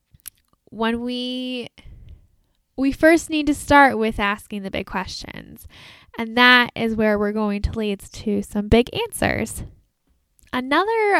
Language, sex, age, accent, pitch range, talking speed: English, female, 10-29, American, 205-250 Hz, 135 wpm